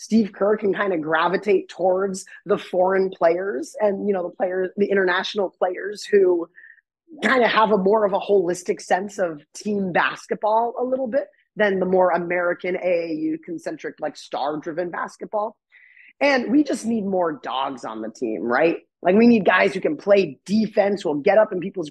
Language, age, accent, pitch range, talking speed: English, 30-49, American, 180-230 Hz, 185 wpm